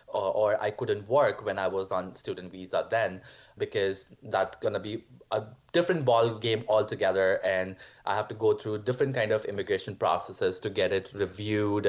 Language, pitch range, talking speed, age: English, 110-145 Hz, 175 wpm, 20-39